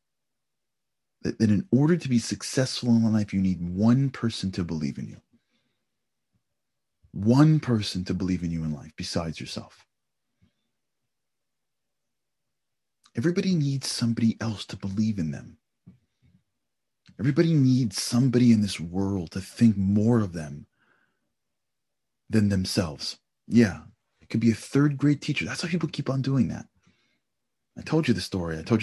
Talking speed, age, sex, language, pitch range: 145 wpm, 30-49, male, English, 85-115 Hz